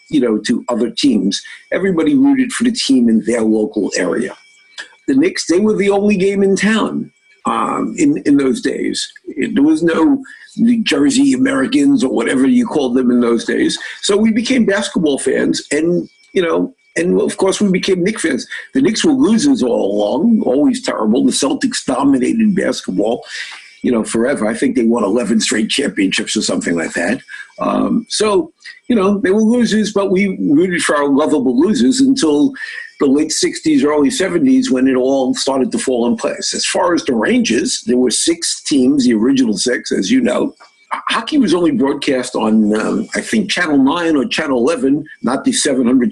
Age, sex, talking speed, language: 50-69, male, 185 wpm, English